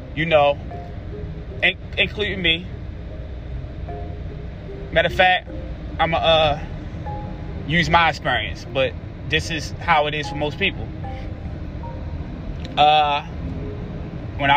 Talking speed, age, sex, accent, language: 95 wpm, 20-39, male, American, English